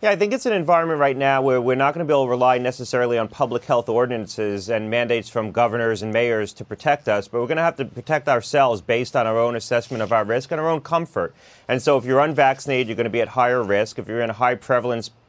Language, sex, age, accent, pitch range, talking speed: English, male, 30-49, American, 115-135 Hz, 270 wpm